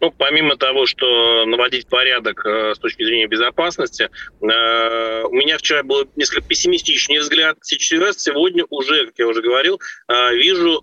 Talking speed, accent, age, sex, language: 140 wpm, native, 20-39, male, Russian